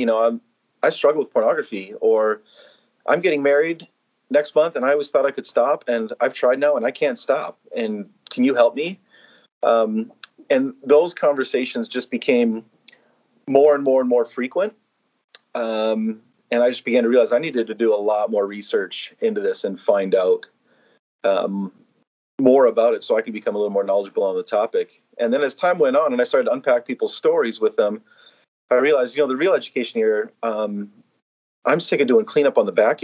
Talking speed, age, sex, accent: 205 wpm, 40-59, male, American